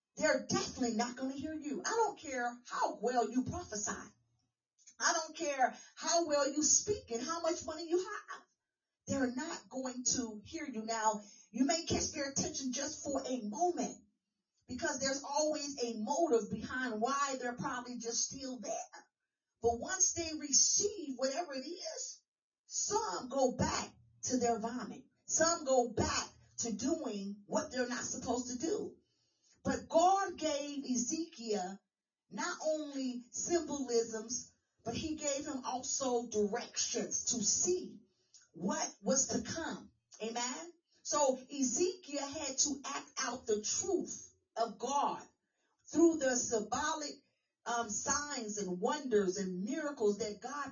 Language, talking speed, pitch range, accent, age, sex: English, 140 wpm, 235-305 Hz, American, 40-59, female